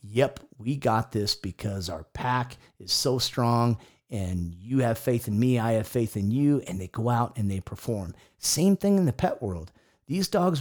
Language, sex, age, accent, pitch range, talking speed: English, male, 40-59, American, 110-140 Hz, 205 wpm